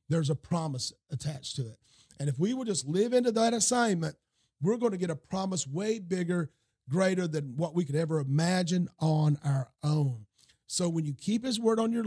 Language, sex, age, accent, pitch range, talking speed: English, male, 40-59, American, 145-190 Hz, 205 wpm